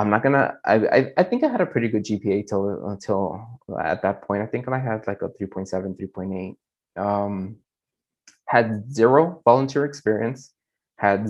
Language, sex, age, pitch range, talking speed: English, male, 20-39, 105-130 Hz, 160 wpm